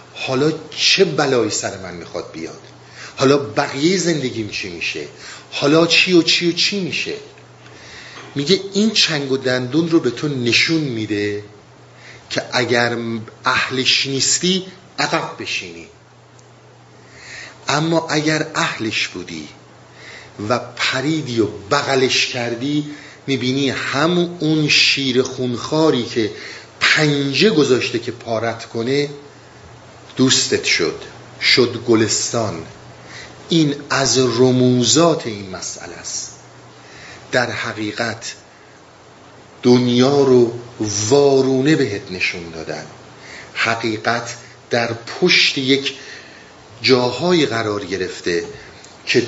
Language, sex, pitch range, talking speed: Persian, male, 115-155 Hz, 95 wpm